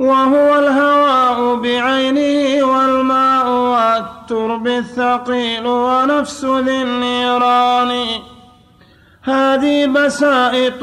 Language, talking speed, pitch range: Arabic, 60 wpm, 245-265 Hz